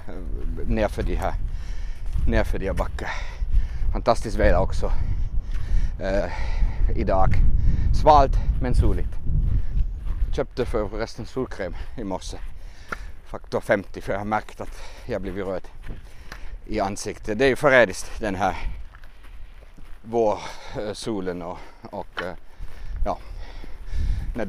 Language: Swedish